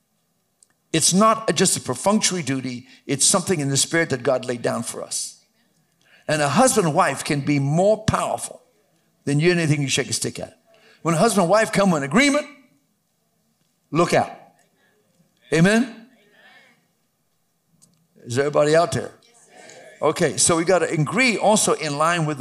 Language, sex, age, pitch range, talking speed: English, male, 60-79, 130-175 Hz, 165 wpm